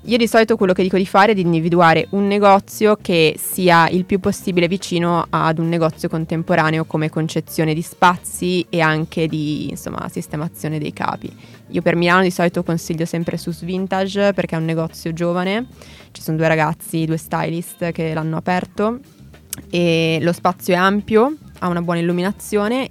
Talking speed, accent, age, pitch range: 170 wpm, native, 20-39, 160-190 Hz